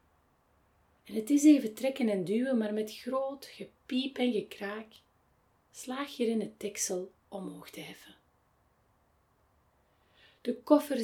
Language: Dutch